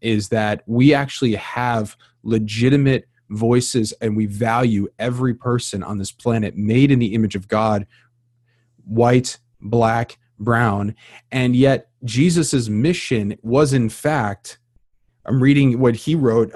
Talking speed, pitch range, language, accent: 130 wpm, 115-140 Hz, English, American